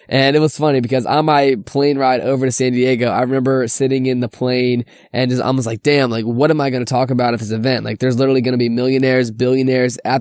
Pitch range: 125-140 Hz